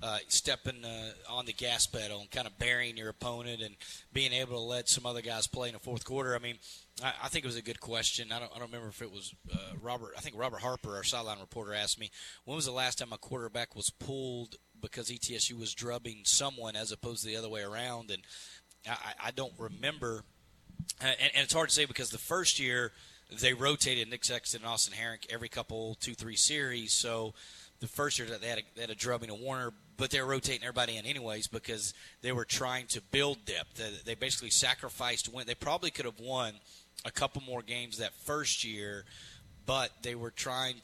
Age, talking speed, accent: 20-39, 215 wpm, American